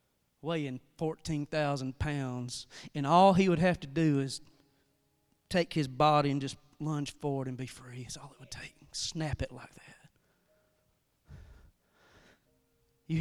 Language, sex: English, male